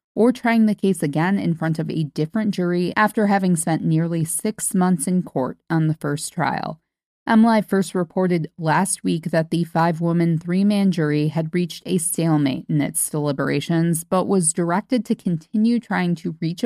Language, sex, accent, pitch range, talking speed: English, female, American, 160-200 Hz, 175 wpm